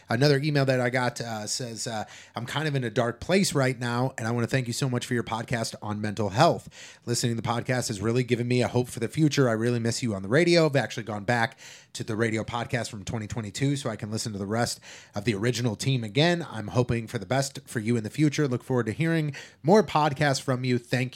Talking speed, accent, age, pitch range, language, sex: 260 wpm, American, 30-49, 115-140 Hz, English, male